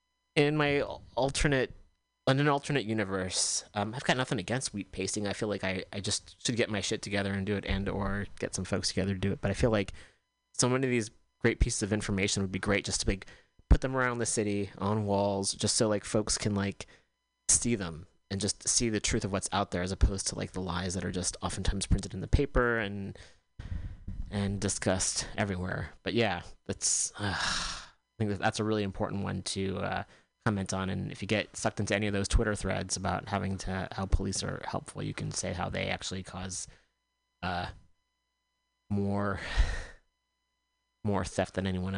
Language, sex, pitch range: English, male, 90-105 Hz